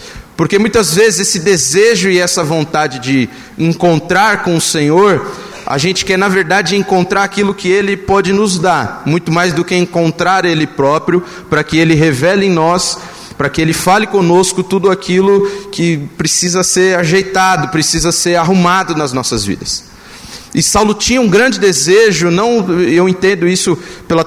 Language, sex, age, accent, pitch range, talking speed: Portuguese, male, 30-49, Brazilian, 160-200 Hz, 165 wpm